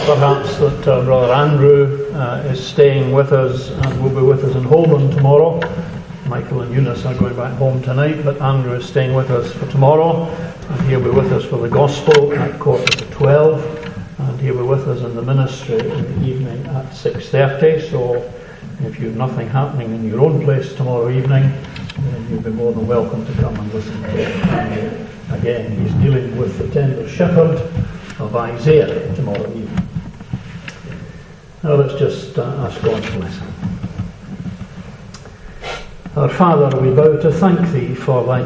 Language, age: English, 60-79